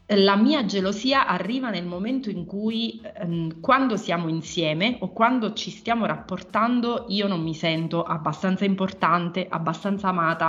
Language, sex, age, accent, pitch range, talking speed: Italian, female, 30-49, native, 170-215 Hz, 145 wpm